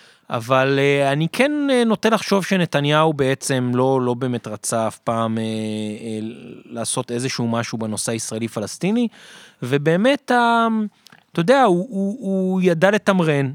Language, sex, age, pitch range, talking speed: Hebrew, male, 30-49, 130-200 Hz, 135 wpm